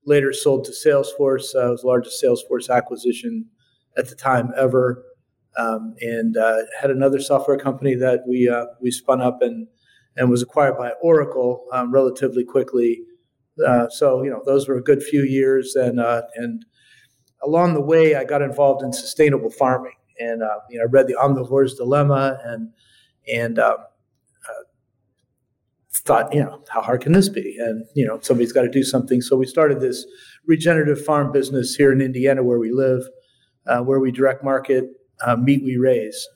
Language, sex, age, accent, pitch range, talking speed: English, male, 40-59, American, 125-150 Hz, 180 wpm